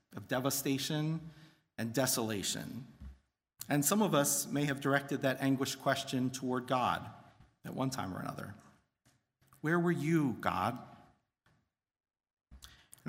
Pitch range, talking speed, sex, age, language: 125-150 Hz, 120 wpm, male, 50-69, English